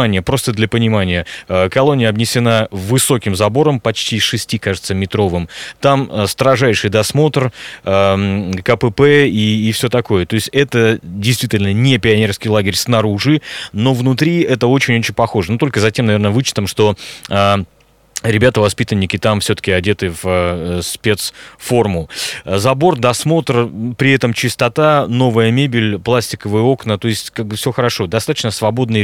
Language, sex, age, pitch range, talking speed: Russian, male, 20-39, 105-130 Hz, 130 wpm